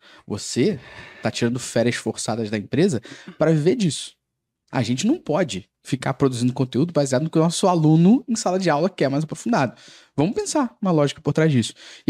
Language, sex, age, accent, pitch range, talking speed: Portuguese, male, 20-39, Brazilian, 125-180 Hz, 190 wpm